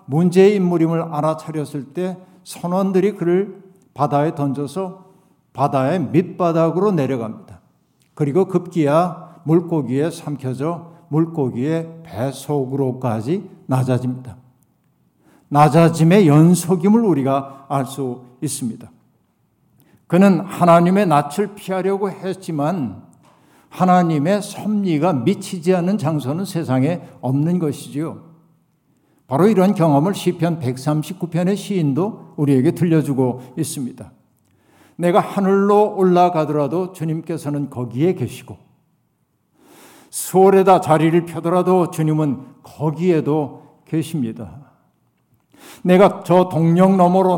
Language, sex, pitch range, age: Korean, male, 145-185 Hz, 60-79